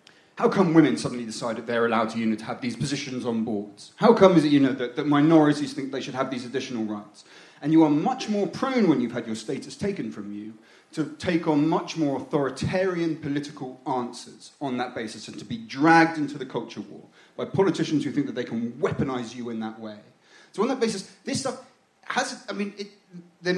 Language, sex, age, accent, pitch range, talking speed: English, male, 30-49, British, 125-165 Hz, 215 wpm